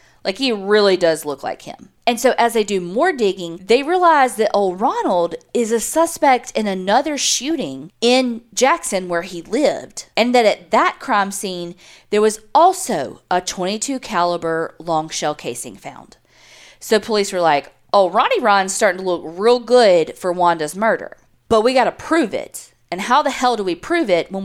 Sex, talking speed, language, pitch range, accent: female, 185 wpm, English, 175-230 Hz, American